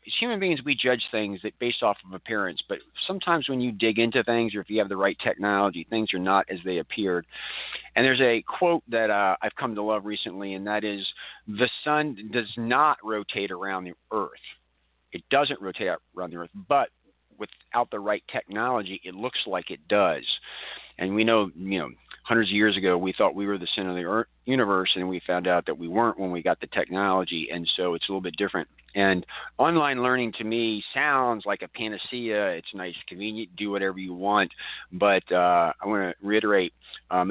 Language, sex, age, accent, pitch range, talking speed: English, male, 40-59, American, 95-115 Hz, 210 wpm